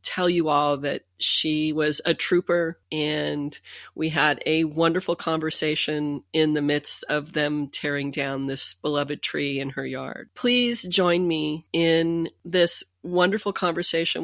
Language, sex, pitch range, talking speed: English, female, 150-165 Hz, 145 wpm